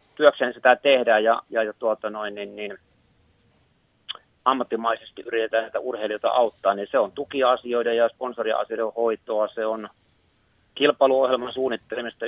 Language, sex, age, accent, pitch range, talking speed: Finnish, male, 30-49, native, 100-115 Hz, 120 wpm